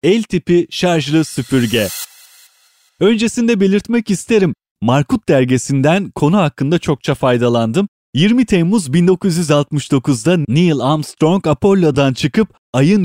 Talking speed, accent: 95 wpm, native